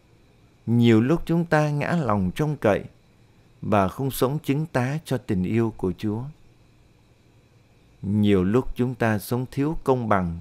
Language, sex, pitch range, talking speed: Vietnamese, male, 105-135 Hz, 150 wpm